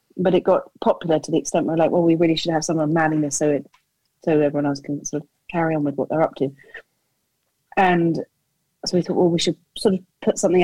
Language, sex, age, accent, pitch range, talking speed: English, female, 30-49, British, 150-170 Hz, 245 wpm